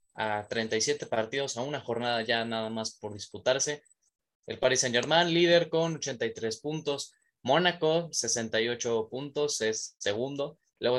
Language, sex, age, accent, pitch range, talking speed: Spanish, male, 20-39, Mexican, 110-140 Hz, 135 wpm